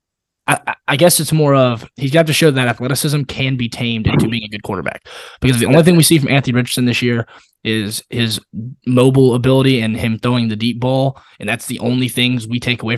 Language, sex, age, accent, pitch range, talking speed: English, male, 20-39, American, 120-145 Hz, 225 wpm